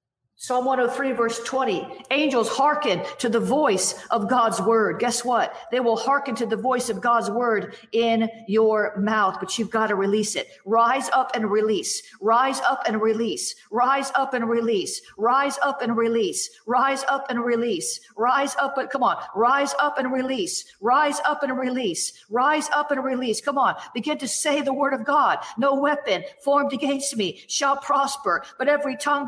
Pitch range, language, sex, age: 235-280 Hz, English, female, 50-69